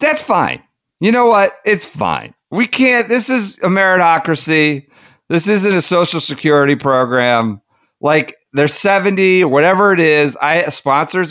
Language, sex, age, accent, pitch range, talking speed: English, male, 50-69, American, 115-165 Hz, 145 wpm